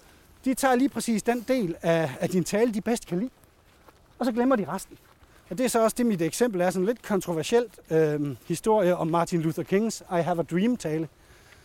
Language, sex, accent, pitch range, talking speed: Danish, male, native, 165-230 Hz, 220 wpm